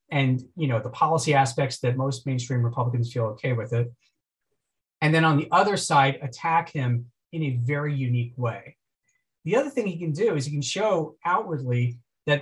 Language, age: English, 40-59